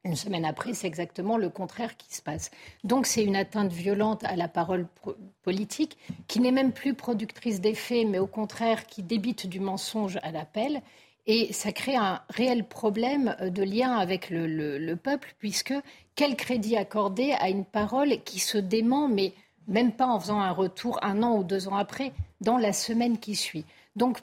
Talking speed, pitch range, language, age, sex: 190 wpm, 195-250 Hz, French, 50-69, female